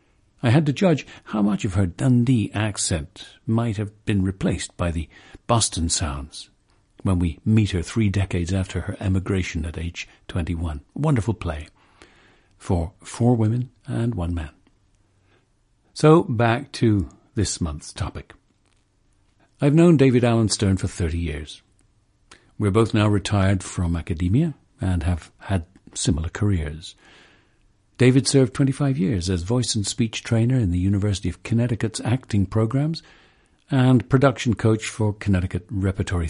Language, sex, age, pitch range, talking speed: English, male, 60-79, 90-115 Hz, 140 wpm